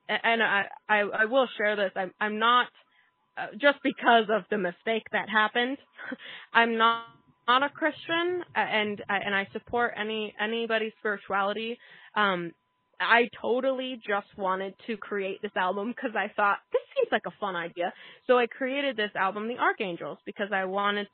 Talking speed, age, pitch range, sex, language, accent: 165 wpm, 20-39, 205-260 Hz, female, English, American